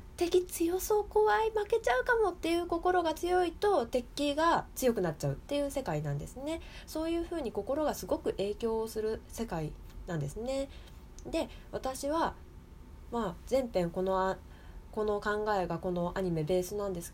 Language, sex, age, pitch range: Japanese, female, 20-39, 185-290 Hz